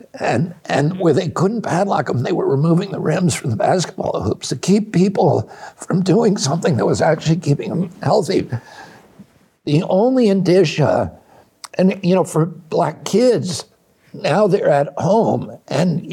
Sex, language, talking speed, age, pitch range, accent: male, English, 155 wpm, 60-79, 145-185 Hz, American